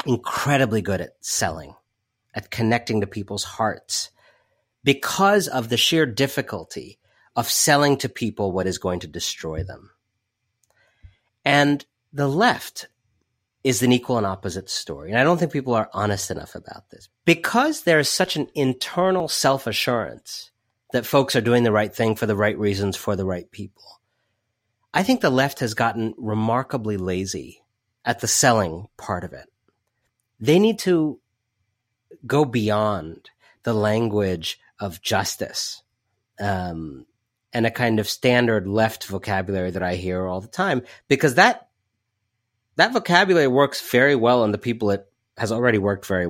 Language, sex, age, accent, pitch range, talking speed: English, male, 40-59, American, 100-130 Hz, 150 wpm